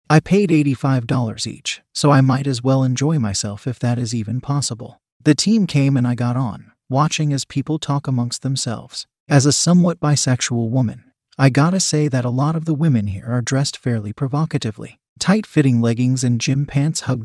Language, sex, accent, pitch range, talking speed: English, male, American, 125-150 Hz, 190 wpm